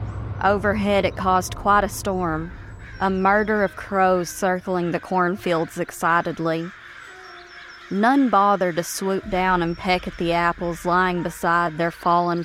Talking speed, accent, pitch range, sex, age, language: 135 wpm, American, 170-195 Hz, female, 30-49, English